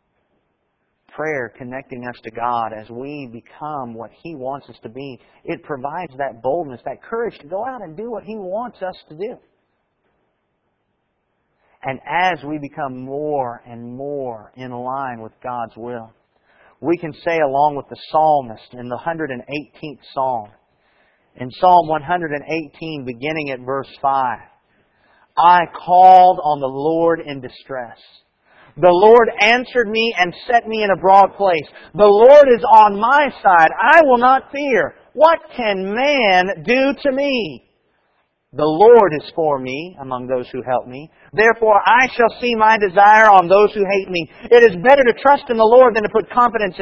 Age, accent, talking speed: 40-59, American, 165 wpm